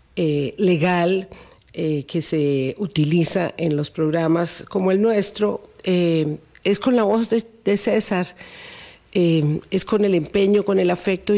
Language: Spanish